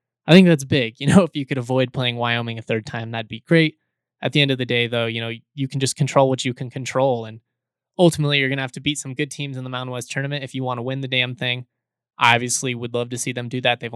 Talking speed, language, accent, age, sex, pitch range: 295 wpm, English, American, 20-39, male, 120-145 Hz